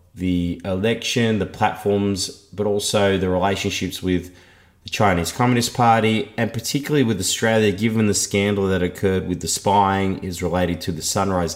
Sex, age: male, 30-49